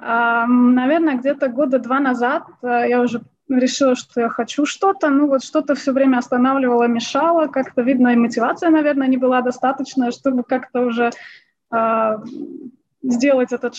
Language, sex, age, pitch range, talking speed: Russian, female, 20-39, 240-285 Hz, 150 wpm